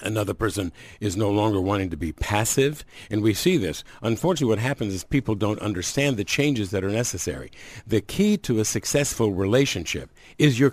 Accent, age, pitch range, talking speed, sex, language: American, 60-79, 100-125 Hz, 185 wpm, male, English